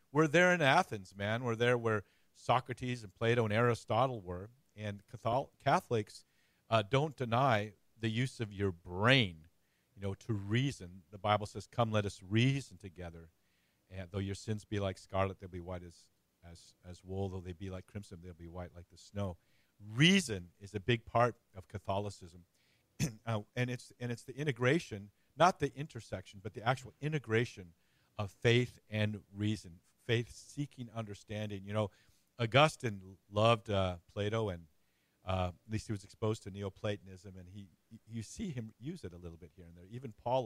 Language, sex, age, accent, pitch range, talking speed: English, male, 50-69, American, 95-120 Hz, 175 wpm